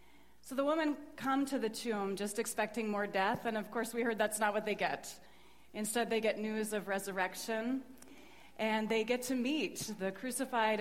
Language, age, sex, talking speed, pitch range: English, 30-49, female, 190 wpm, 185-230 Hz